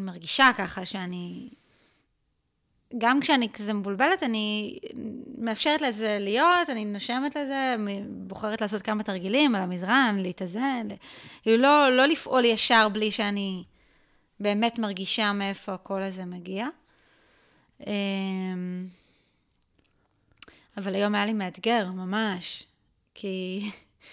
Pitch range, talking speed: 195-245 Hz, 100 wpm